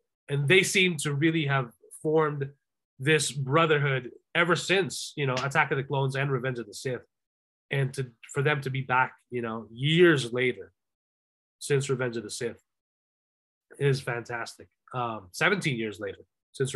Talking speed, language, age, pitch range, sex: 160 wpm, English, 20-39, 135-175 Hz, male